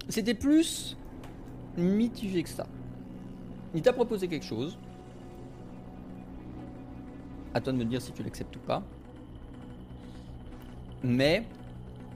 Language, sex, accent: French, male, French